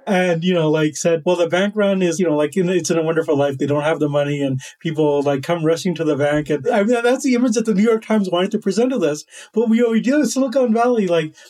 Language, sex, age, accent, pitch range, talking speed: English, male, 30-49, American, 160-205 Hz, 290 wpm